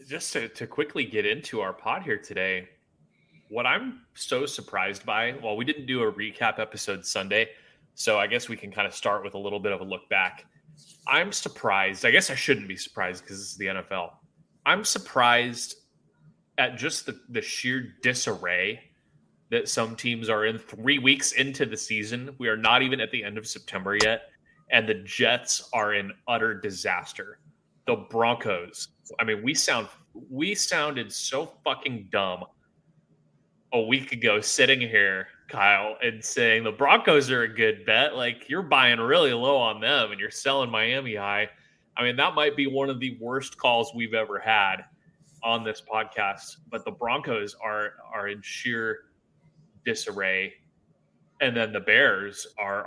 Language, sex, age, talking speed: English, male, 20-39, 175 wpm